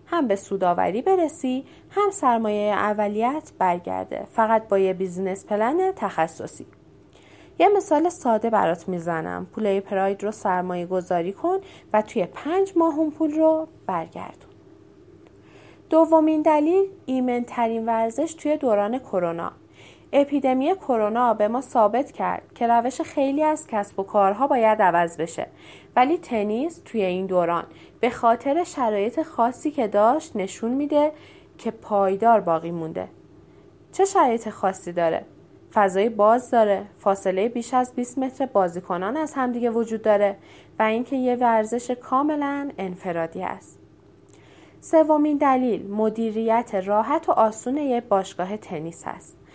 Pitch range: 190-280 Hz